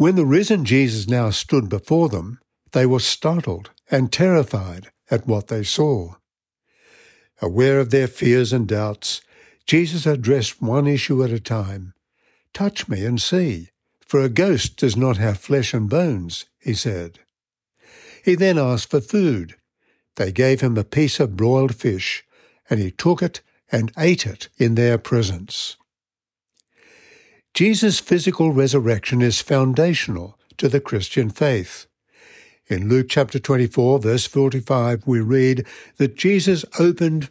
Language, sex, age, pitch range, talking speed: English, male, 60-79, 110-150 Hz, 140 wpm